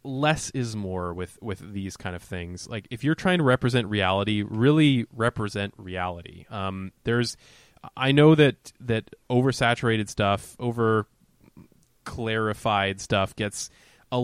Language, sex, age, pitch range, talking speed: English, male, 20-39, 105-125 Hz, 135 wpm